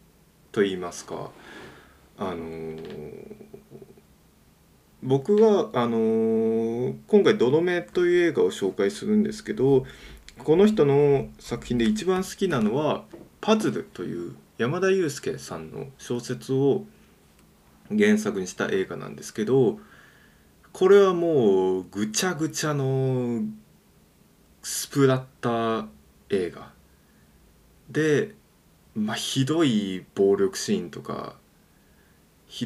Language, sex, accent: Japanese, male, native